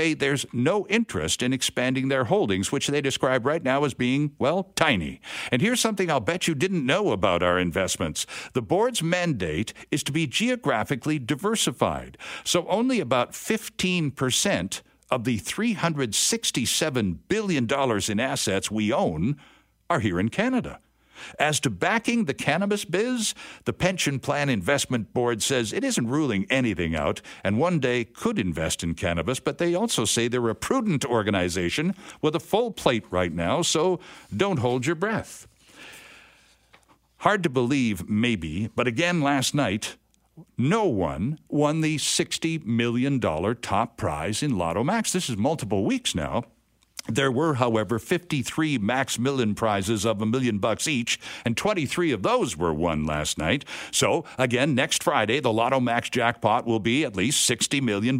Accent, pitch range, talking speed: American, 110-160 Hz, 155 wpm